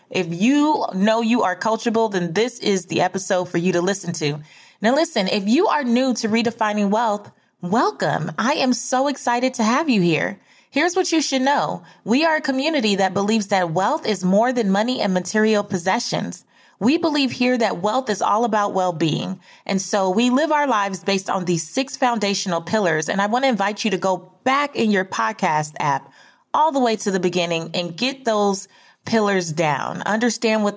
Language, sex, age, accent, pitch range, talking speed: English, female, 30-49, American, 185-240 Hz, 195 wpm